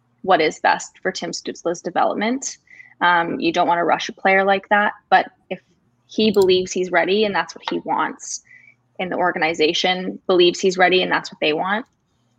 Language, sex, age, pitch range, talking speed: English, female, 20-39, 175-210 Hz, 190 wpm